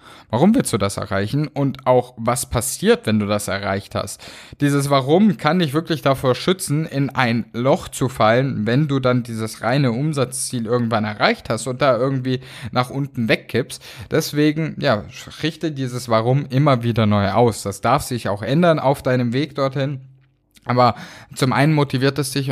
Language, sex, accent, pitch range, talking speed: German, male, German, 115-140 Hz, 175 wpm